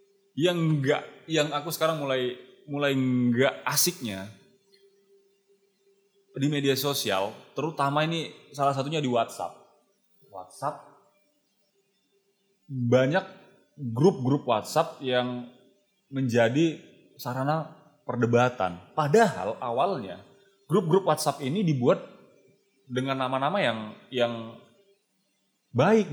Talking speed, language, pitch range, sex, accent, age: 85 wpm, Indonesian, 135-200 Hz, male, native, 30-49